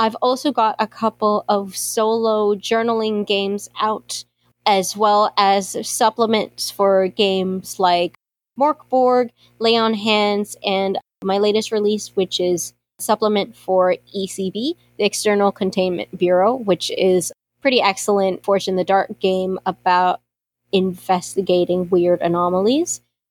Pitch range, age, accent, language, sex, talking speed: 185-225 Hz, 20-39, American, English, female, 125 wpm